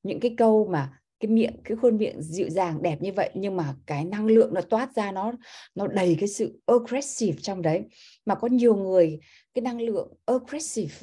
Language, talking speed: Vietnamese, 205 wpm